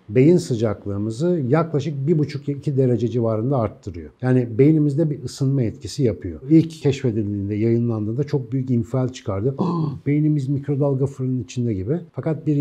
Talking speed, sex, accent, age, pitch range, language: 130 wpm, male, native, 50-69, 110-140 Hz, Turkish